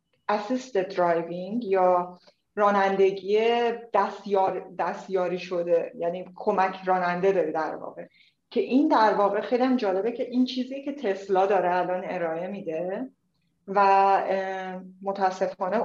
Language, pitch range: Persian, 180-220 Hz